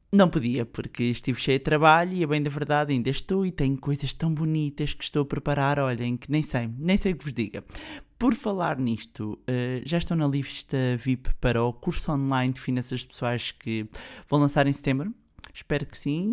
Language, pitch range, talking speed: Portuguese, 130-160 Hz, 205 wpm